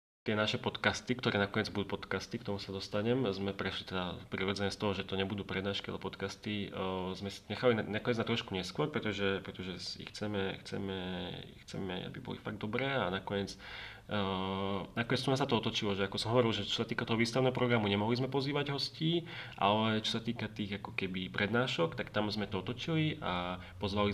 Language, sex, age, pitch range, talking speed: Slovak, male, 30-49, 95-110 Hz, 195 wpm